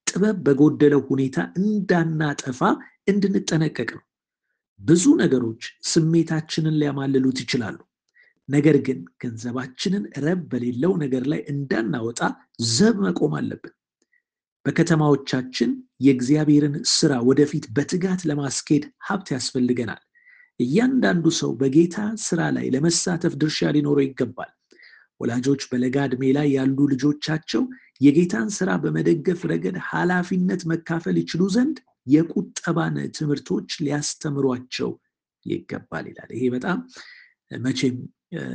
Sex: male